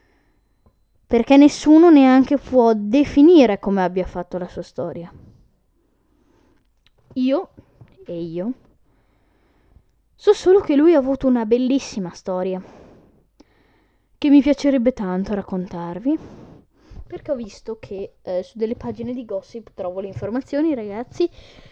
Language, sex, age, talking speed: Italian, female, 10-29, 115 wpm